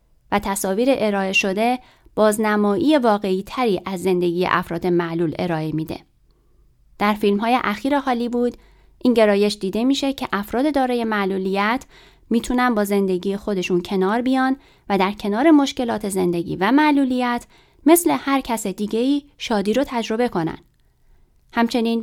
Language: Persian